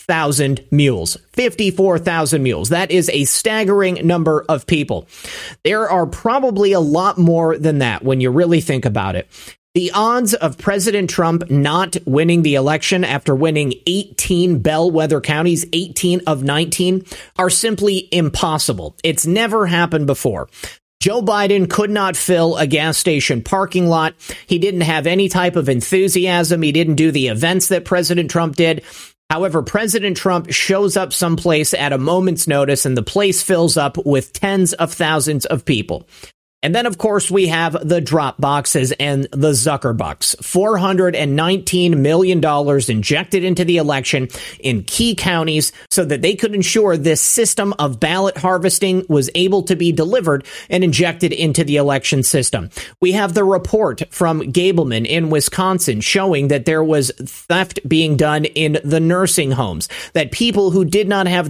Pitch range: 150-185 Hz